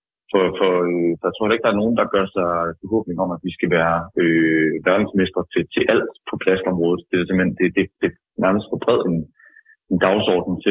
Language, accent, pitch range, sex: Danish, native, 85-105 Hz, male